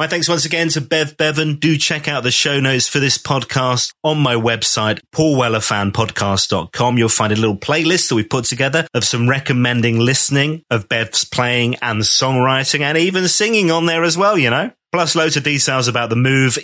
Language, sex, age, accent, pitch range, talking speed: English, male, 30-49, British, 115-150 Hz, 195 wpm